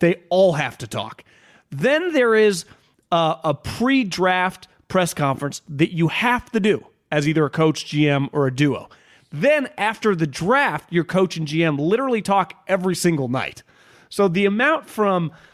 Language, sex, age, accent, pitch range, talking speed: English, male, 30-49, American, 145-200 Hz, 165 wpm